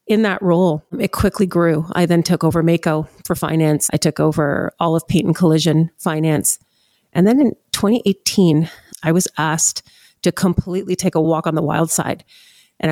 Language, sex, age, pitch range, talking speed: English, female, 40-59, 155-185 Hz, 180 wpm